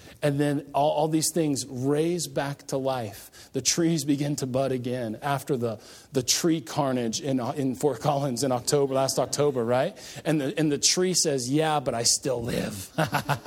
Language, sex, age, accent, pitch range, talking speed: English, male, 40-59, American, 140-205 Hz, 185 wpm